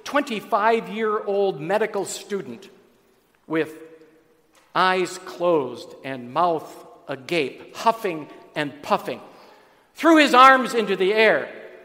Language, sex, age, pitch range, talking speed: English, male, 50-69, 145-200 Hz, 90 wpm